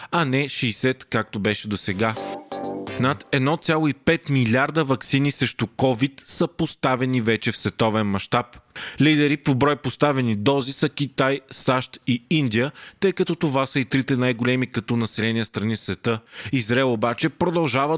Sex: male